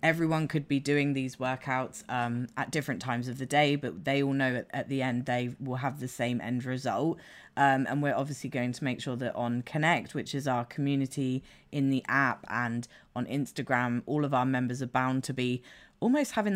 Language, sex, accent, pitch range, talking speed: English, female, British, 130-150 Hz, 215 wpm